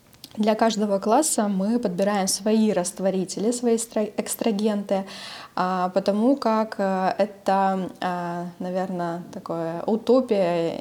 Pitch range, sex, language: 180-230 Hz, female, Russian